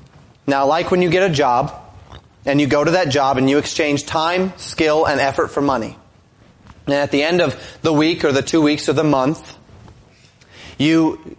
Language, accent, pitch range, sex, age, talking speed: English, American, 135-170 Hz, male, 30-49, 195 wpm